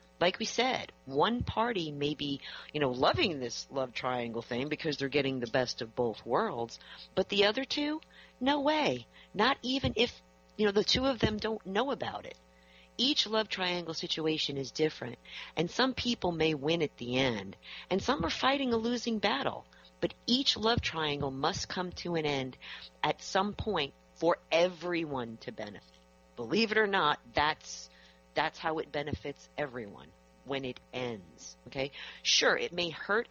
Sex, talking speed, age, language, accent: female, 175 wpm, 40-59, English, American